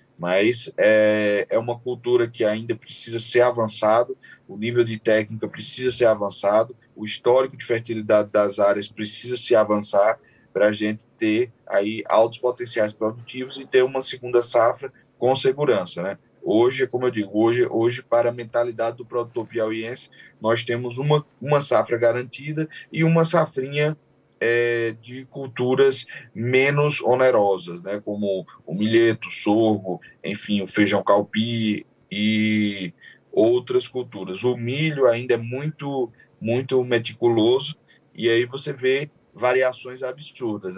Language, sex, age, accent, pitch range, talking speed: Portuguese, male, 10-29, Brazilian, 105-130 Hz, 140 wpm